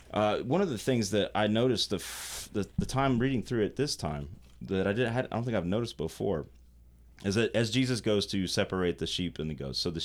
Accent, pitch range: American, 70-115 Hz